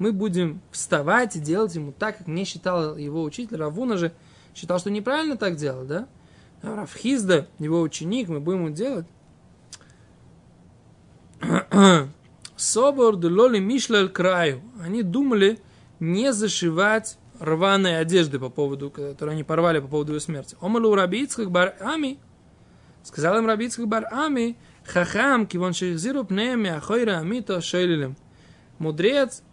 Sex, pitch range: male, 160-225 Hz